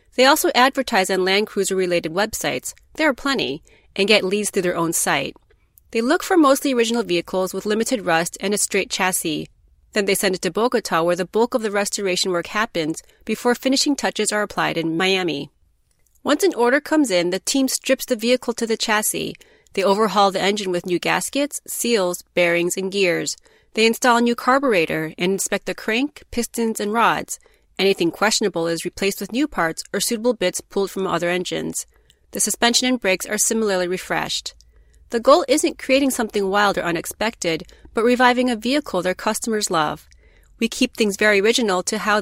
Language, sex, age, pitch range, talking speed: English, female, 30-49, 185-240 Hz, 185 wpm